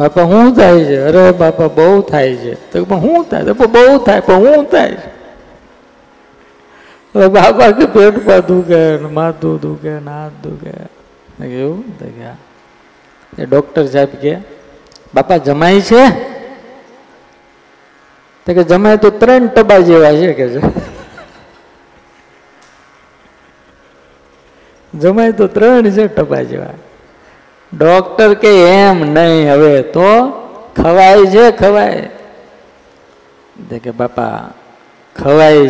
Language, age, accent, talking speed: Gujarati, 50-69, native, 65 wpm